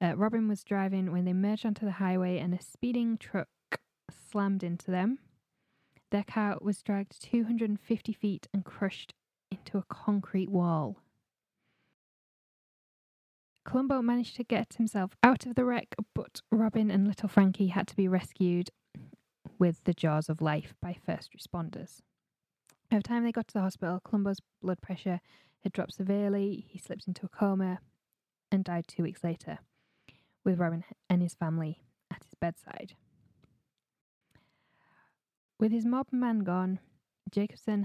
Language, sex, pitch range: English, female, 180-220 Hz